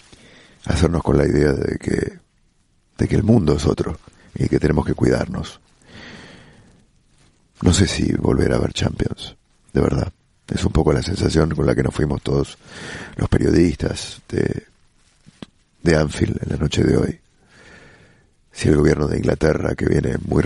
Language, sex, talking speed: English, male, 160 wpm